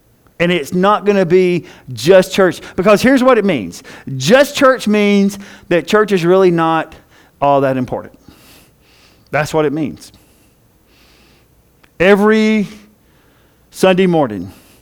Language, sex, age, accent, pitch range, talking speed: English, male, 50-69, American, 170-240 Hz, 125 wpm